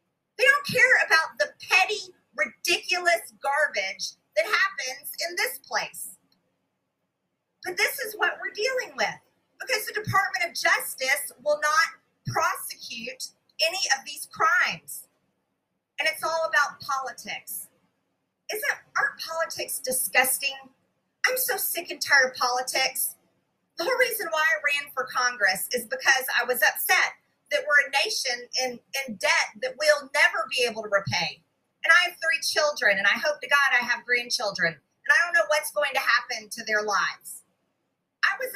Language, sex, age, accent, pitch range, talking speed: English, female, 40-59, American, 255-330 Hz, 155 wpm